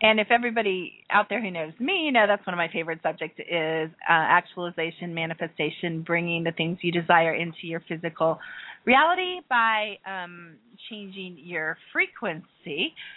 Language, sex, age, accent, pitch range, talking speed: English, female, 30-49, American, 170-220 Hz, 155 wpm